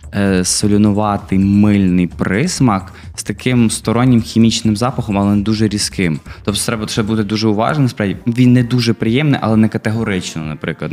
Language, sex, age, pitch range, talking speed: Ukrainian, male, 20-39, 90-110 Hz, 135 wpm